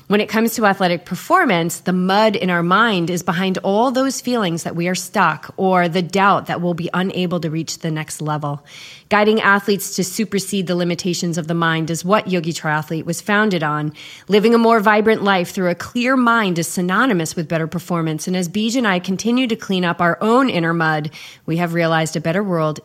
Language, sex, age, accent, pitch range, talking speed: English, female, 30-49, American, 165-205 Hz, 215 wpm